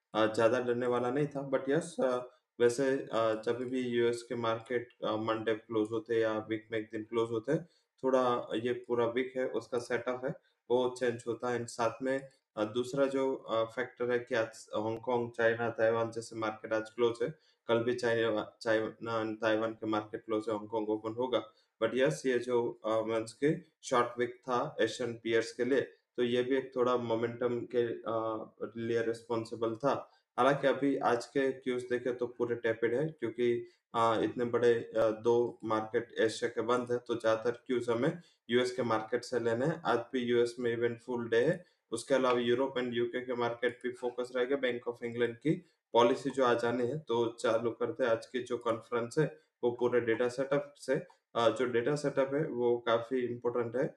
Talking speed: 165 wpm